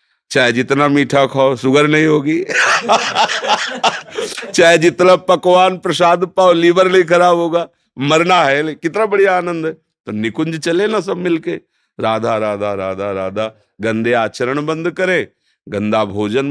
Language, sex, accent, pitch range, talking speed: Hindi, male, native, 100-150 Hz, 140 wpm